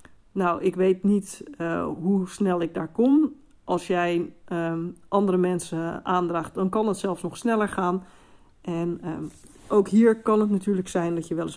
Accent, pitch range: Dutch, 170-200 Hz